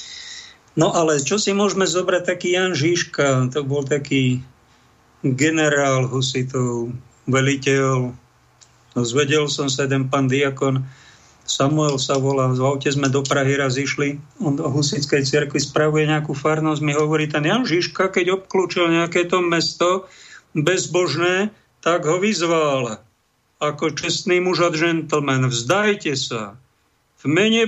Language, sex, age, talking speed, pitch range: Slovak, male, 50-69, 130 wpm, 135-170 Hz